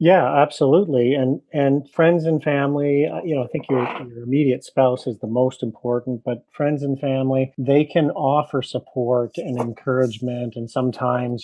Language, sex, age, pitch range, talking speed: English, male, 40-59, 120-145 Hz, 165 wpm